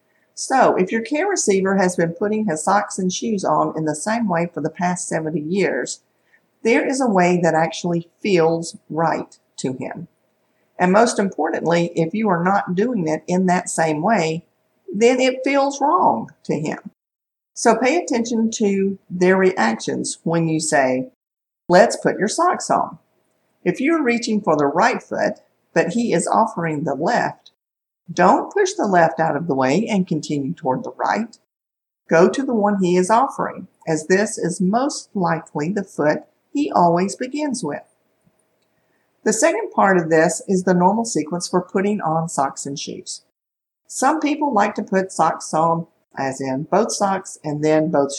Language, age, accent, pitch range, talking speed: English, 50-69, American, 160-225 Hz, 170 wpm